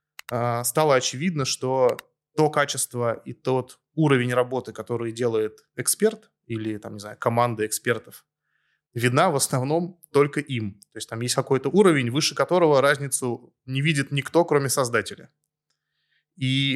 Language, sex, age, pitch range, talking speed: Russian, male, 20-39, 120-145 Hz, 135 wpm